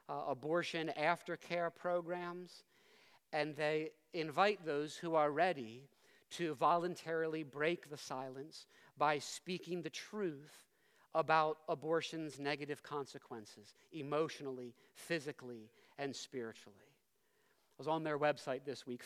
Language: English